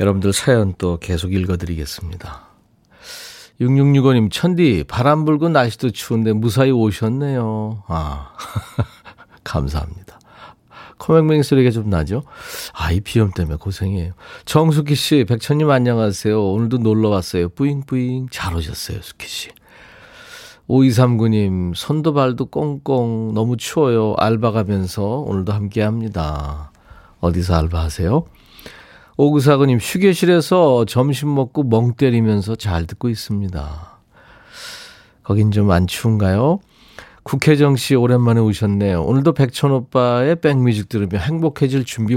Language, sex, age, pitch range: Korean, male, 40-59, 95-135 Hz